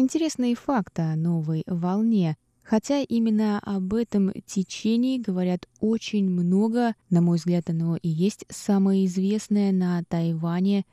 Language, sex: Russian, female